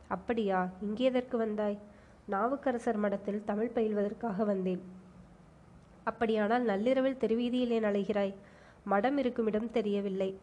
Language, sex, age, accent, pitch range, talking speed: Tamil, female, 20-39, native, 195-230 Hz, 90 wpm